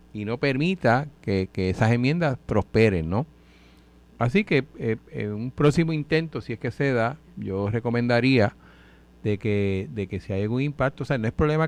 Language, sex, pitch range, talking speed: Spanish, male, 100-140 Hz, 190 wpm